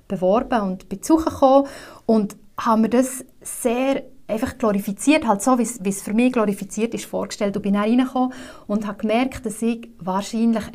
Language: German